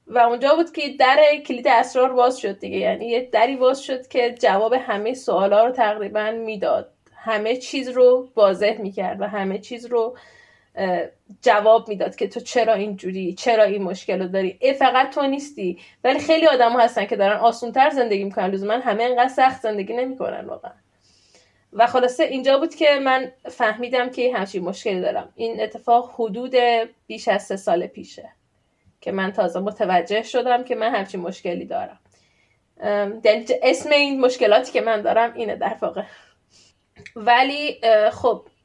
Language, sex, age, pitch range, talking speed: Persian, female, 10-29, 205-250 Hz, 155 wpm